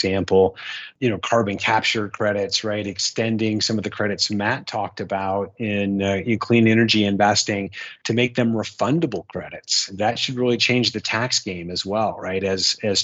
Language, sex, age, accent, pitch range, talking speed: English, male, 30-49, American, 100-115 Hz, 170 wpm